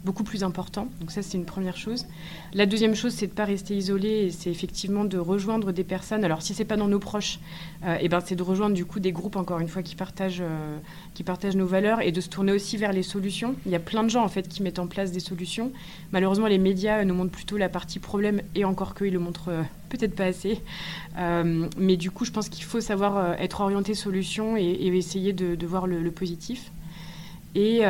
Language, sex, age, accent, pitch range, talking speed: French, female, 20-39, French, 175-205 Hz, 255 wpm